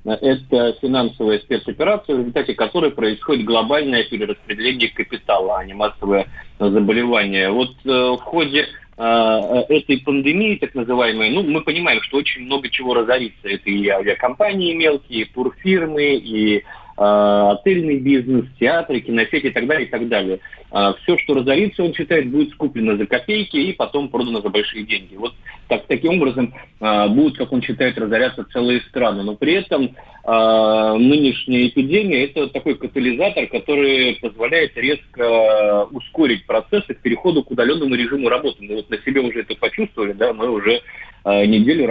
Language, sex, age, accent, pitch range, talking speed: Russian, male, 30-49, native, 110-135 Hz, 150 wpm